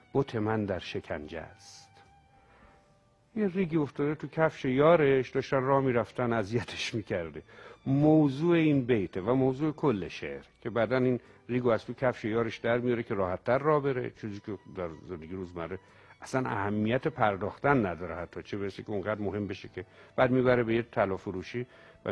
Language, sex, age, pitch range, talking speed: Persian, male, 60-79, 100-140 Hz, 165 wpm